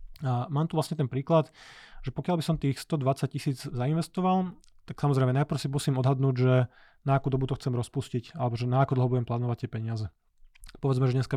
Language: Slovak